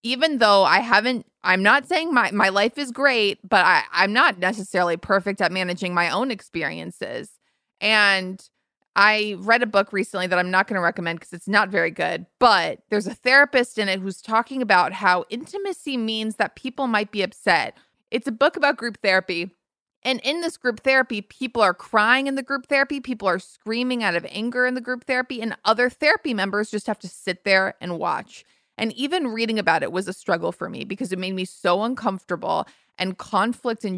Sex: female